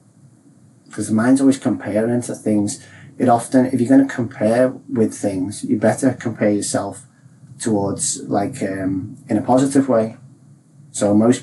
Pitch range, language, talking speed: 110-135 Hz, English, 150 wpm